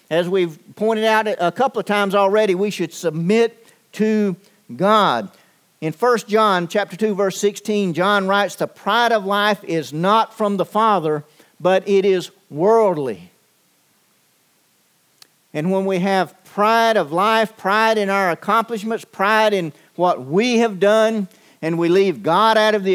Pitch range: 180-225 Hz